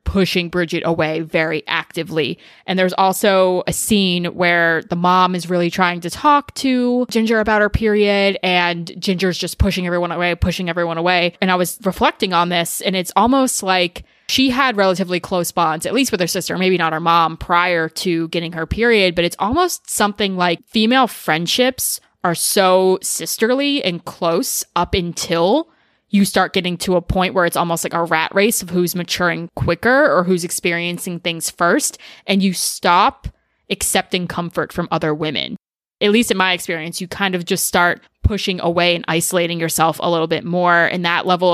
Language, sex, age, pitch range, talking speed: English, female, 20-39, 170-195 Hz, 185 wpm